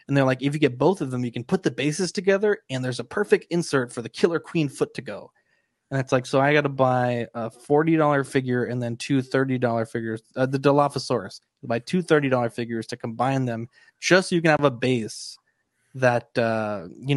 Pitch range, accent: 125-150 Hz, American